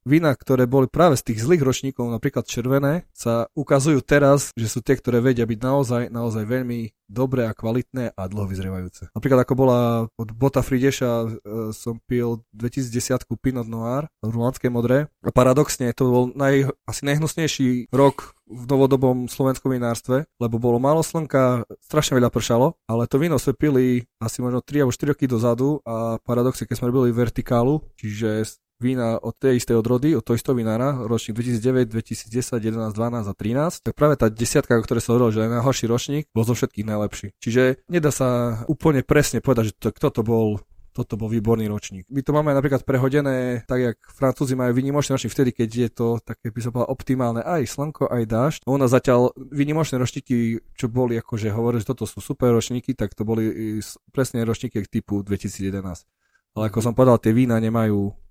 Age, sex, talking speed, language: 20-39, male, 180 wpm, Slovak